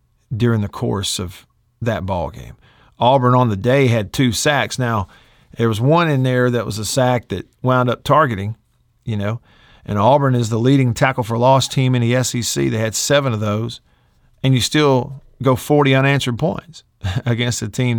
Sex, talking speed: male, 190 wpm